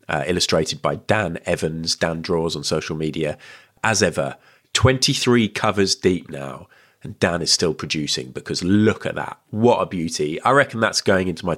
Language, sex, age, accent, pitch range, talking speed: English, male, 30-49, British, 80-110 Hz, 175 wpm